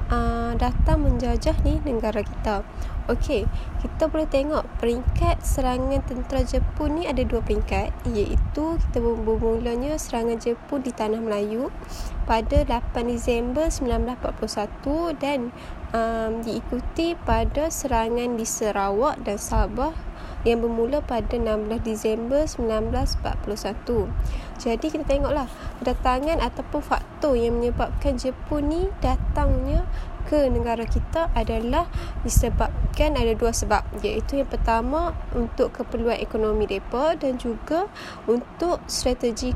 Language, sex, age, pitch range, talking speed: Malay, female, 10-29, 230-290 Hz, 115 wpm